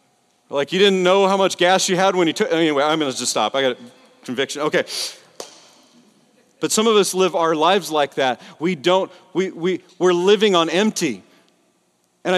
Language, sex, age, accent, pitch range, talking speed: English, male, 40-59, American, 165-215 Hz, 200 wpm